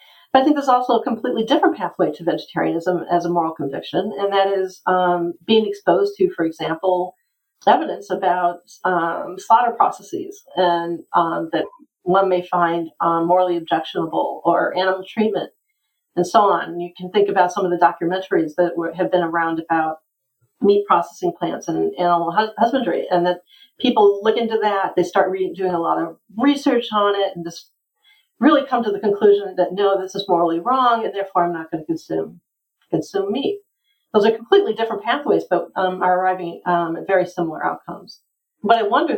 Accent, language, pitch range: American, English, 175-230 Hz